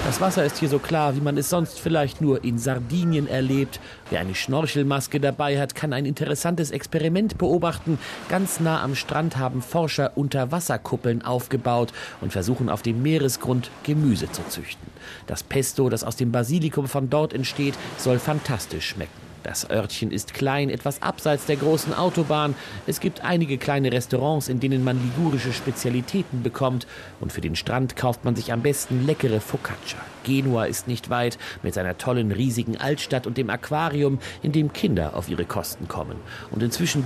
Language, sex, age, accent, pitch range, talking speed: German, male, 40-59, German, 120-150 Hz, 170 wpm